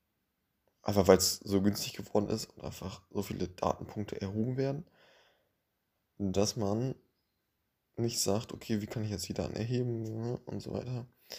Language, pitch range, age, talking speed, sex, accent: German, 100-120 Hz, 20-39, 155 wpm, male, German